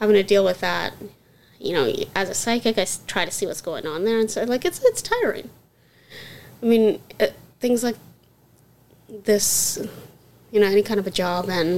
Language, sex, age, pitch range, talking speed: English, female, 20-39, 185-225 Hz, 200 wpm